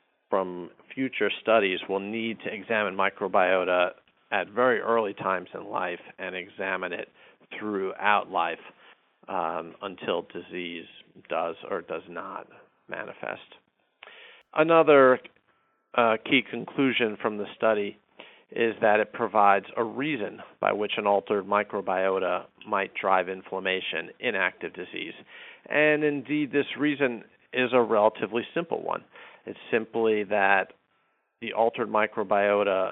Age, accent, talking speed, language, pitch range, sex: 50-69, American, 120 wpm, English, 95-115 Hz, male